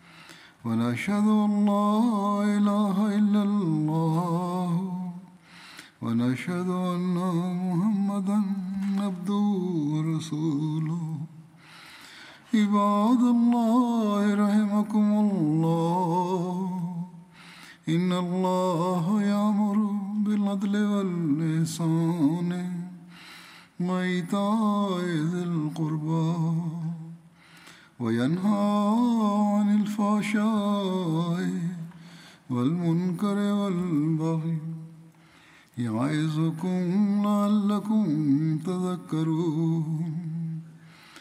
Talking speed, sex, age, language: 35 wpm, male, 50-69, Indonesian